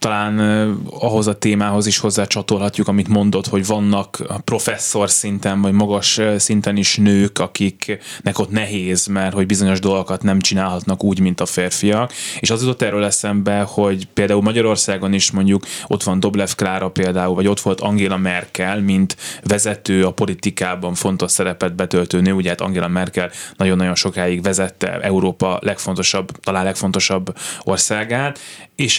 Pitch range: 95-110 Hz